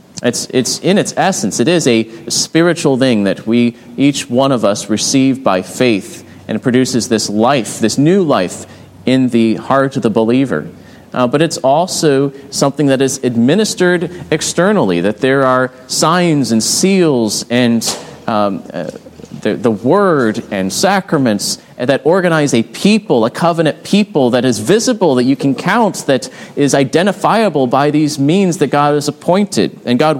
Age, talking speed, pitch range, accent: 30-49, 160 wpm, 120-165 Hz, American